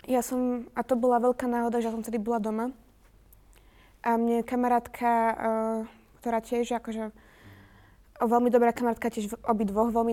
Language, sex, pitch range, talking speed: Slovak, female, 215-235 Hz, 155 wpm